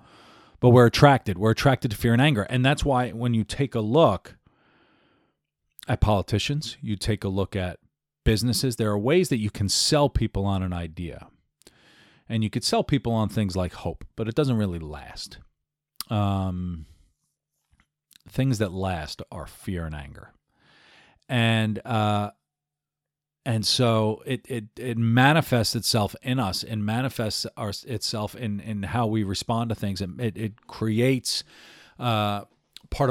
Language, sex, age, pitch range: English, male, 40-59, 100-125 Hz